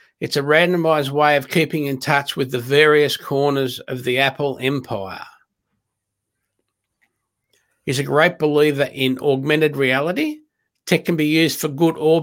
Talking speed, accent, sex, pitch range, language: 145 wpm, Australian, male, 140-165 Hz, English